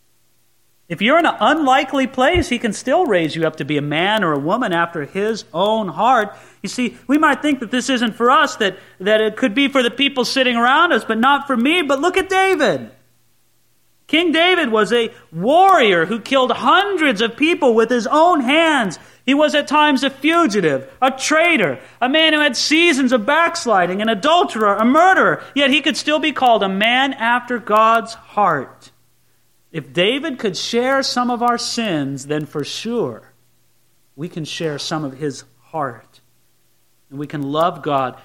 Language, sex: English, male